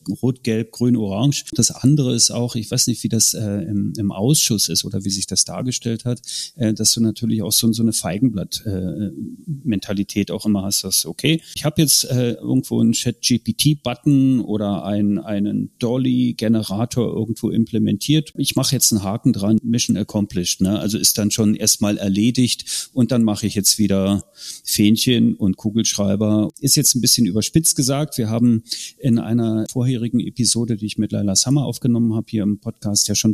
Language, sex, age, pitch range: German, male, 40-59, 105-130 Hz